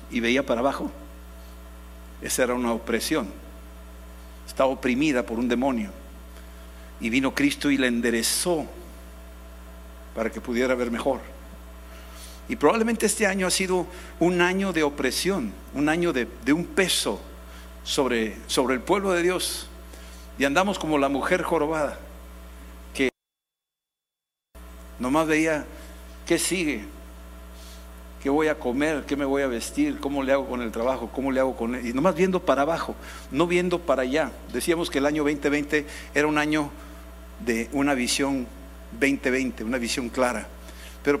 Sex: male